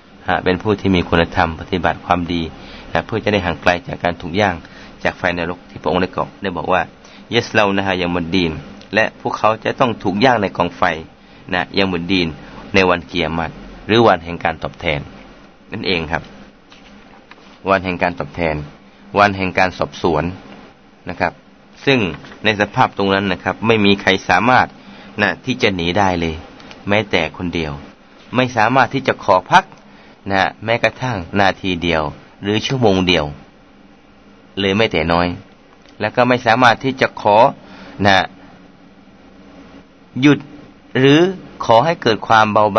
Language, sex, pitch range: Thai, male, 90-110 Hz